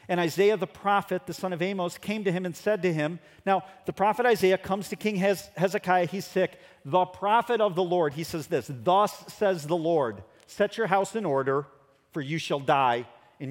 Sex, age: male, 40-59